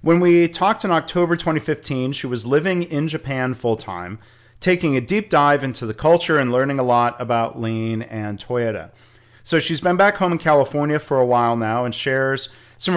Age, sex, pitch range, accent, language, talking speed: 40-59, male, 115-145 Hz, American, English, 190 wpm